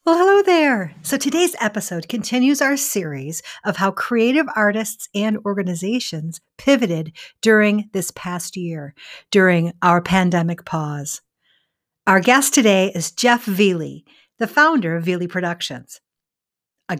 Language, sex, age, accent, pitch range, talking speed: English, female, 50-69, American, 175-240 Hz, 125 wpm